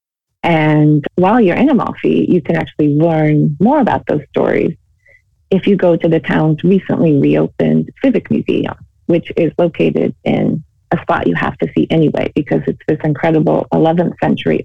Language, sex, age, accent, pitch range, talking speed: English, female, 30-49, American, 150-185 Hz, 165 wpm